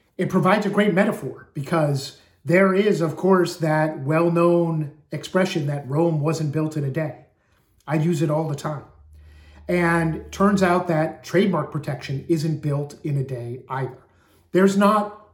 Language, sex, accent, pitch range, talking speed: English, male, American, 140-180 Hz, 155 wpm